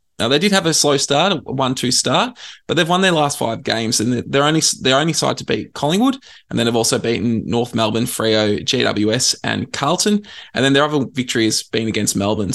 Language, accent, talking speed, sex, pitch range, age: English, Australian, 220 wpm, male, 115-150 Hz, 20-39